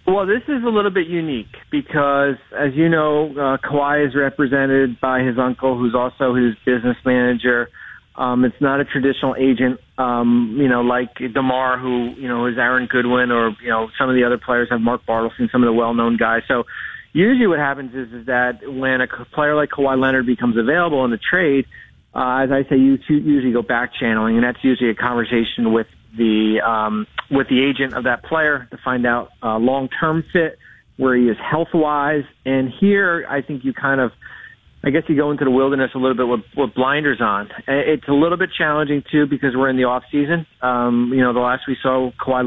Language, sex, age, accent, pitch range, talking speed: English, male, 40-59, American, 125-145 Hz, 210 wpm